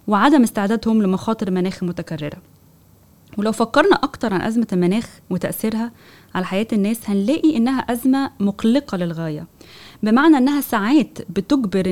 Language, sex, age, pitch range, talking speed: Arabic, female, 20-39, 190-255 Hz, 120 wpm